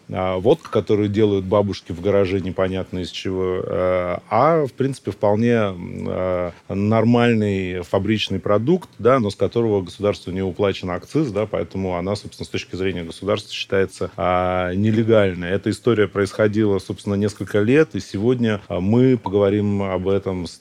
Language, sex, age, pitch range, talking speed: Russian, male, 30-49, 95-115 Hz, 135 wpm